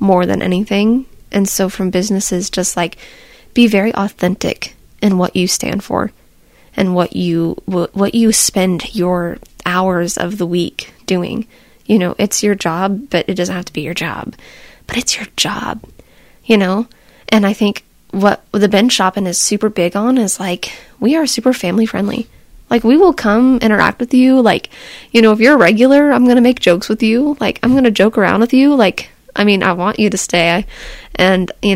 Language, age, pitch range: English, 20-39, 180-225 Hz